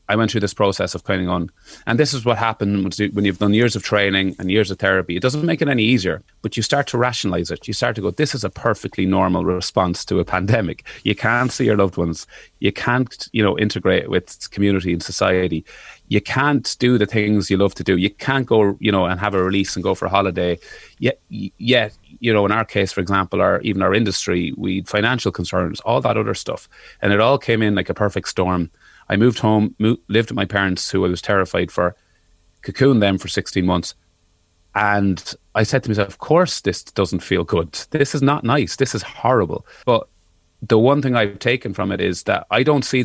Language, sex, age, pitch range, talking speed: English, male, 30-49, 95-115 Hz, 225 wpm